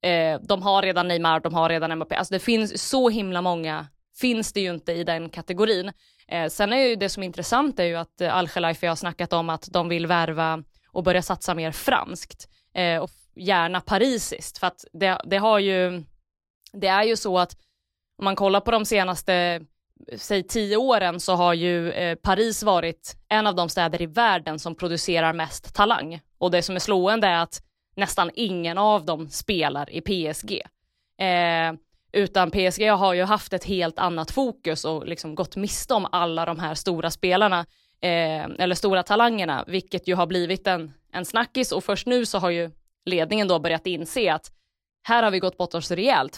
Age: 20-39